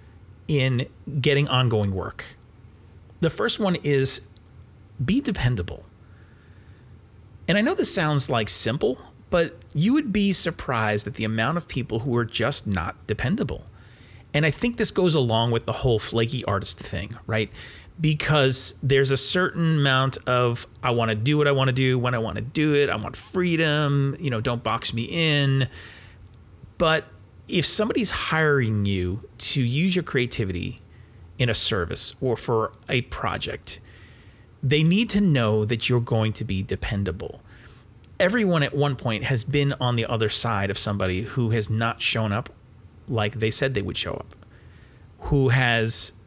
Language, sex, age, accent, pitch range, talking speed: English, male, 30-49, American, 105-135 Hz, 165 wpm